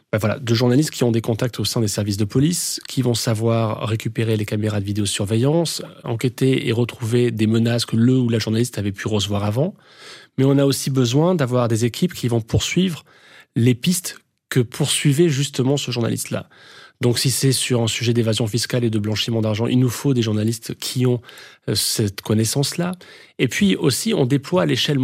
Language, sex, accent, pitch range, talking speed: French, male, French, 115-145 Hz, 195 wpm